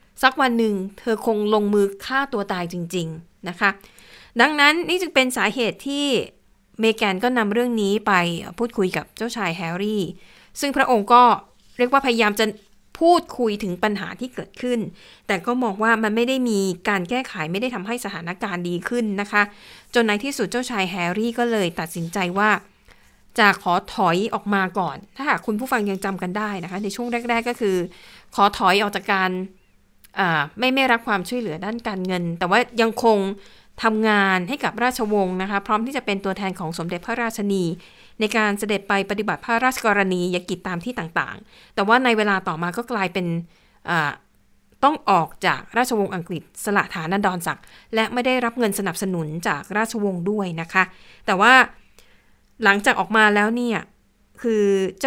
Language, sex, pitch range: Thai, female, 190-235 Hz